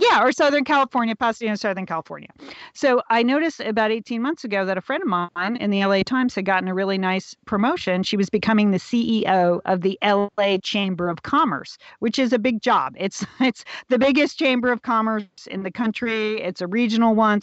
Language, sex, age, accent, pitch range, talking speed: English, female, 40-59, American, 185-240 Hz, 205 wpm